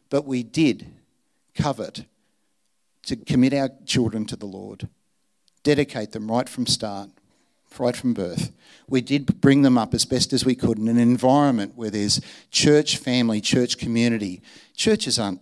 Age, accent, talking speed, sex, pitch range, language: 50-69, Australian, 155 wpm, male, 115-150 Hz, English